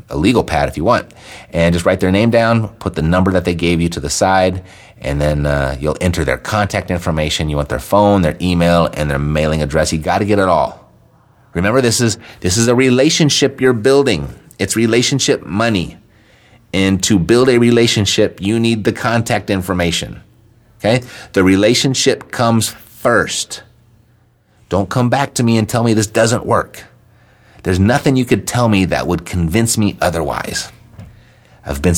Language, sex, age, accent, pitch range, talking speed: English, male, 30-49, American, 85-115 Hz, 180 wpm